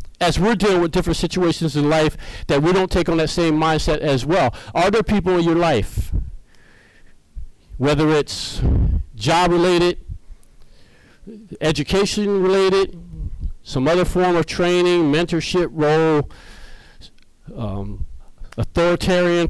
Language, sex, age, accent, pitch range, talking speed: English, male, 50-69, American, 140-175 Hz, 120 wpm